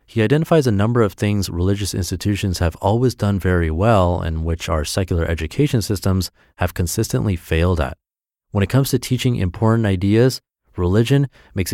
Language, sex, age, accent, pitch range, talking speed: English, male, 30-49, American, 85-115 Hz, 165 wpm